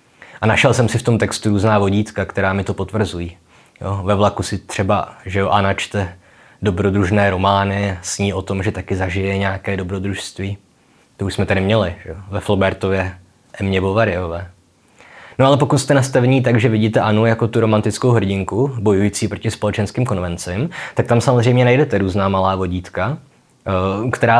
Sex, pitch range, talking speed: male, 95-110 Hz, 160 wpm